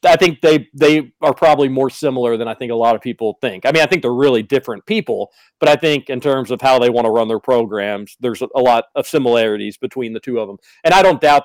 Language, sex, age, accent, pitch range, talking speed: English, male, 40-59, American, 130-175 Hz, 265 wpm